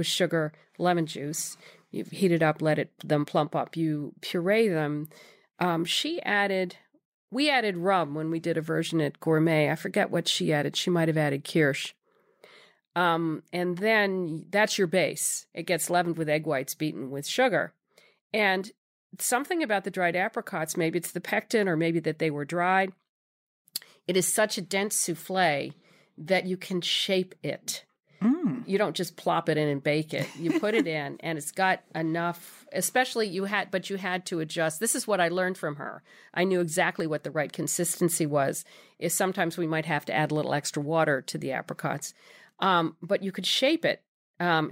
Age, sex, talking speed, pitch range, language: 40-59, female, 190 wpm, 155-195 Hz, English